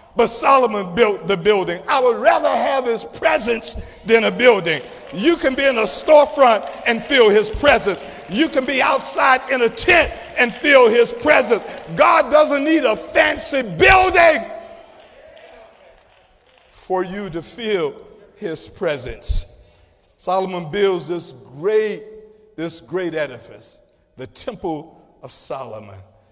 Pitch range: 190-280 Hz